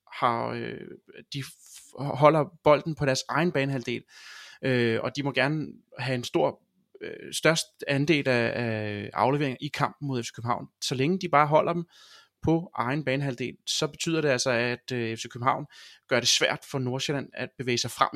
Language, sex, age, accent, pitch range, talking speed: Danish, male, 30-49, native, 120-145 Hz, 180 wpm